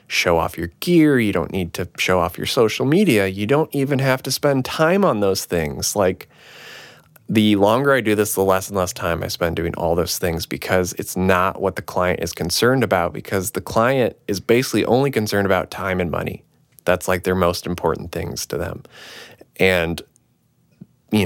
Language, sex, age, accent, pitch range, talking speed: English, male, 20-39, American, 95-120 Hz, 200 wpm